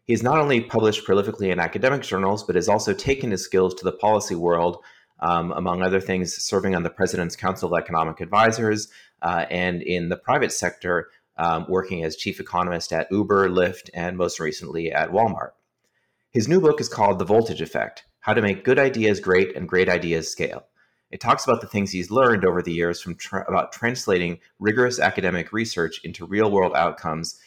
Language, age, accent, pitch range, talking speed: English, 30-49, American, 90-110 Hz, 190 wpm